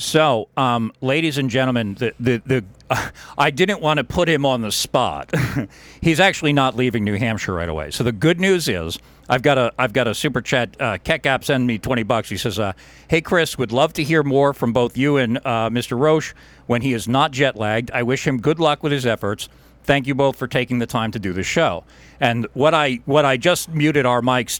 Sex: male